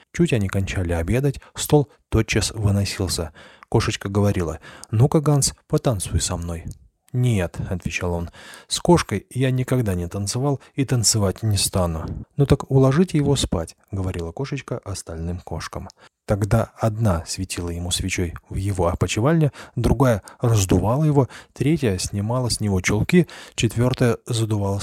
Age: 30-49